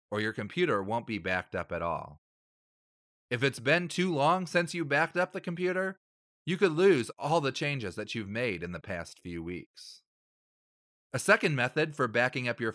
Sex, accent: male, American